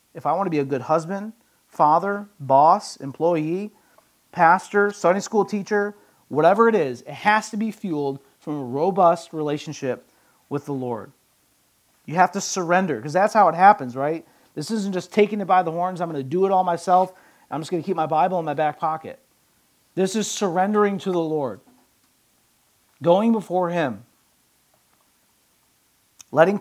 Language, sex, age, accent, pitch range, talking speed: English, male, 40-59, American, 135-185 Hz, 170 wpm